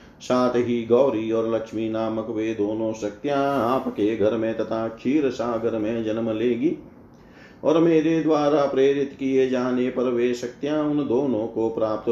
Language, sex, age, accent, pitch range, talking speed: Hindi, male, 40-59, native, 110-130 Hz, 50 wpm